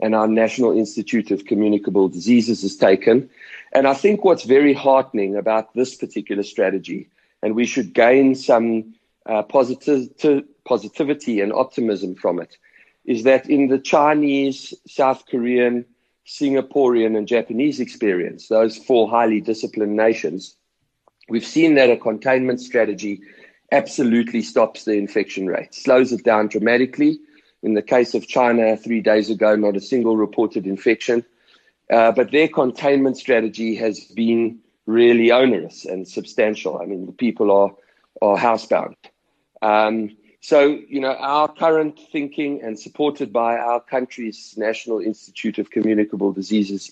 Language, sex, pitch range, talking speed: English, male, 110-130 Hz, 140 wpm